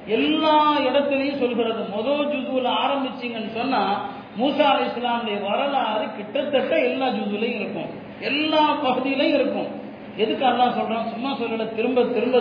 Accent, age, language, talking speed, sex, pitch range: native, 40-59, Tamil, 105 wpm, male, 225-275 Hz